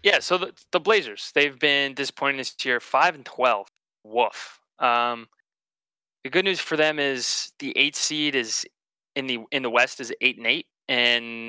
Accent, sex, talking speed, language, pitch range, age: American, male, 185 wpm, English, 120-140 Hz, 20-39